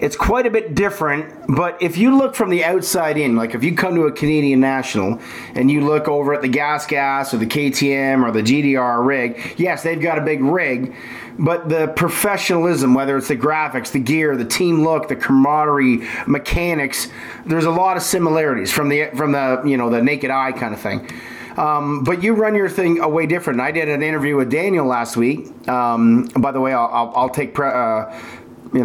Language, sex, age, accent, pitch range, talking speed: English, male, 30-49, American, 130-165 Hz, 210 wpm